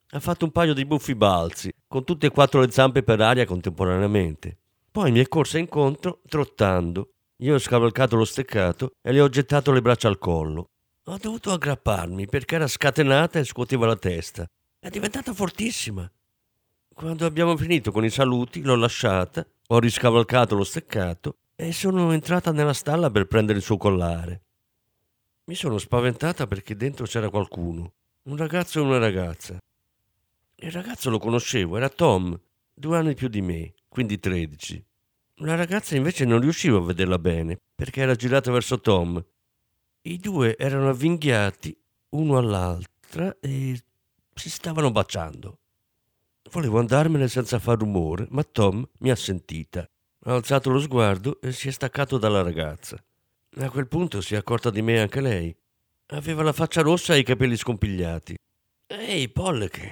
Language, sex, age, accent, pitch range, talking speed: Italian, male, 50-69, native, 100-145 Hz, 160 wpm